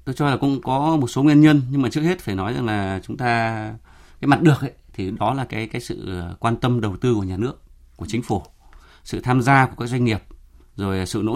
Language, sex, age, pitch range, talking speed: Vietnamese, male, 20-39, 95-130 Hz, 260 wpm